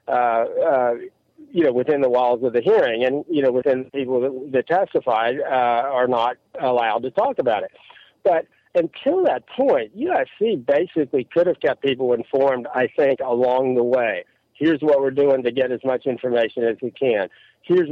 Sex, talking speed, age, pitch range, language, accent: male, 190 wpm, 50-69, 130-165 Hz, English, American